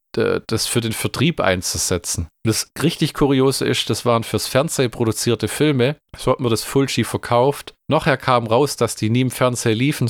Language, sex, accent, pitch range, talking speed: German, male, German, 110-130 Hz, 180 wpm